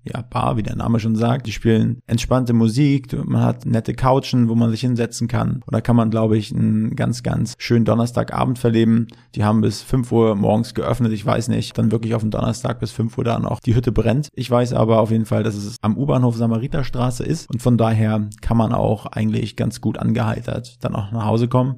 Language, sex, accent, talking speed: German, male, German, 225 wpm